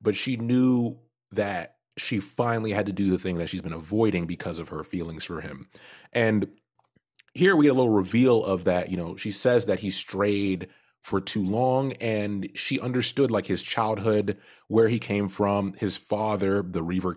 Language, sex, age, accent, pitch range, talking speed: English, male, 30-49, American, 95-120 Hz, 190 wpm